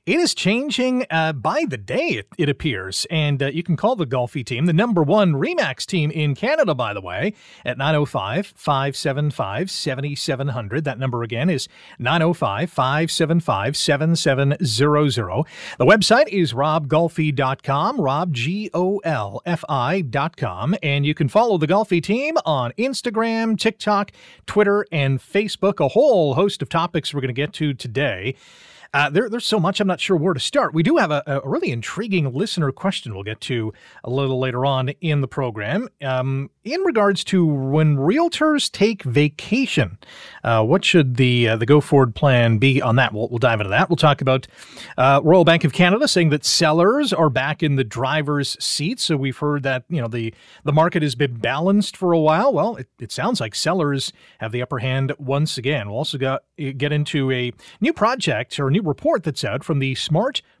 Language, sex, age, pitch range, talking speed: English, male, 40-59, 135-180 Hz, 180 wpm